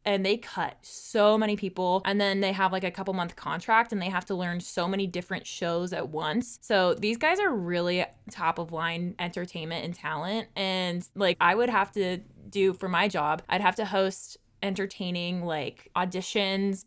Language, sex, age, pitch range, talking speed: English, female, 20-39, 175-215 Hz, 190 wpm